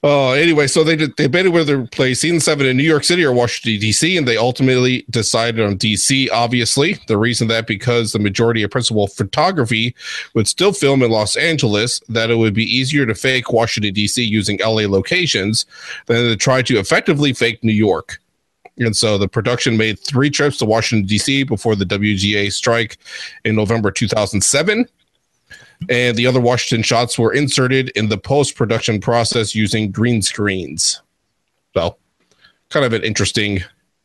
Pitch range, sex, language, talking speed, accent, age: 110-140 Hz, male, English, 170 wpm, American, 30-49